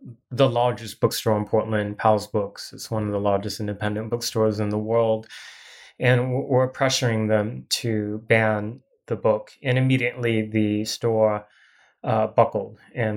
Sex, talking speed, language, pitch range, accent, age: male, 145 wpm, English, 110-120 Hz, American, 20-39